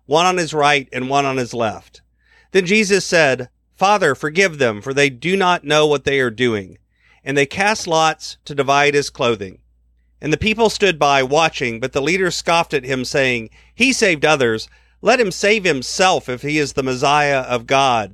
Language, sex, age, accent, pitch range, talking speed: English, male, 40-59, American, 130-180 Hz, 195 wpm